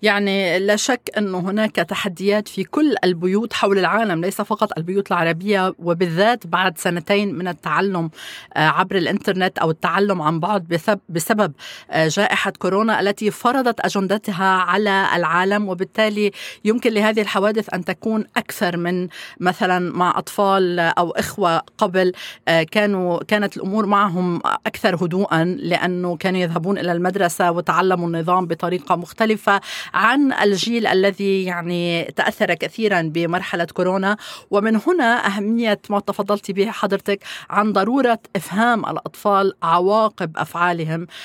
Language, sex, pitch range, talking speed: Arabic, female, 175-205 Hz, 120 wpm